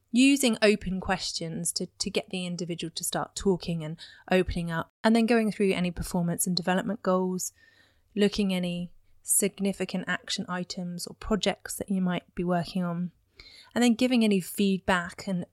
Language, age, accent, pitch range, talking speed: English, 20-39, British, 170-195 Hz, 160 wpm